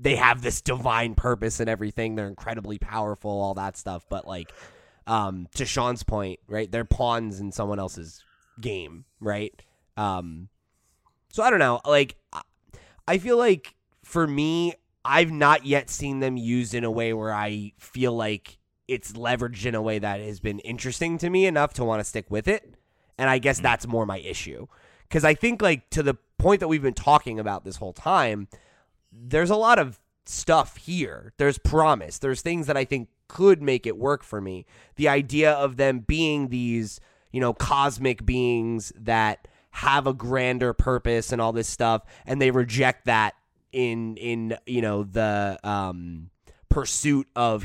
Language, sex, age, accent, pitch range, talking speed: English, male, 20-39, American, 105-135 Hz, 180 wpm